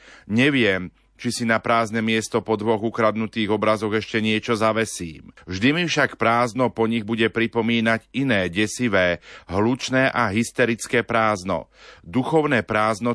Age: 40-59